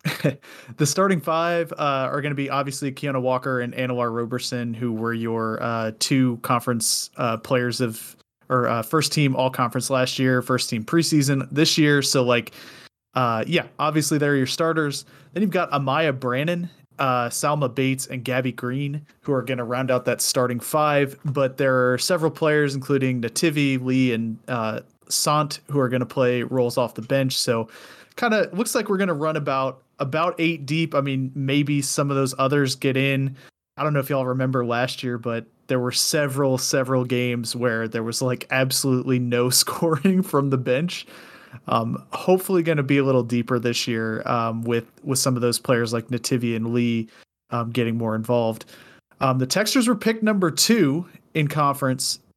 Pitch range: 125-145 Hz